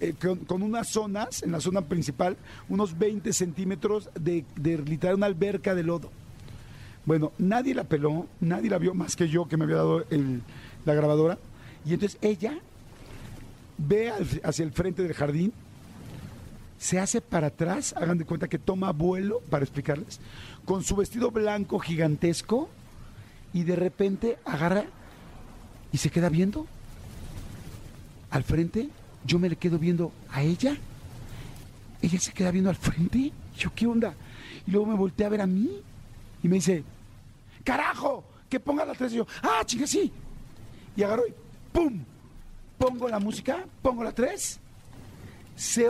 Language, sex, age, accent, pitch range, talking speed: Spanish, male, 50-69, Mexican, 150-215 Hz, 155 wpm